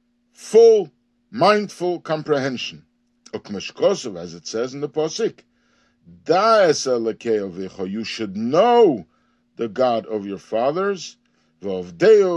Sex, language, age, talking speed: male, English, 50-69, 95 wpm